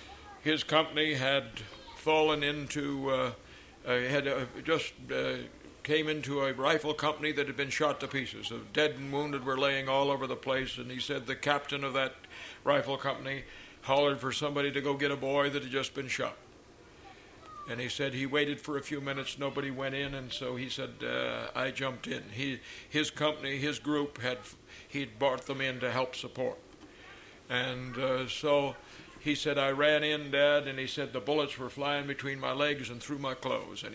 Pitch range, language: 125-140 Hz, English